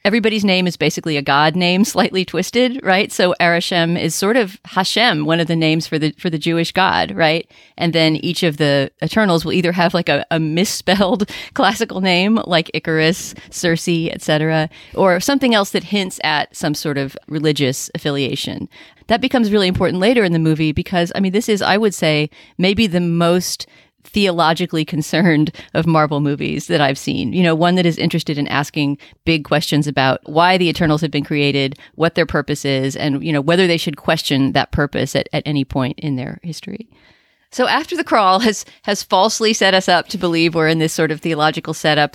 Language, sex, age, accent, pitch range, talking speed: English, female, 40-59, American, 155-190 Hz, 200 wpm